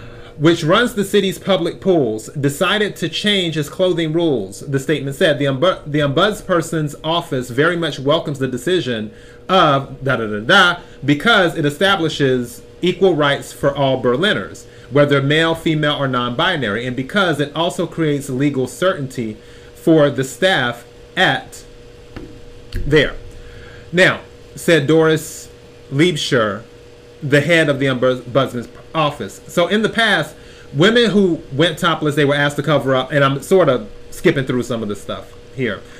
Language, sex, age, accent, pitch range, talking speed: English, male, 30-49, American, 120-165 Hz, 150 wpm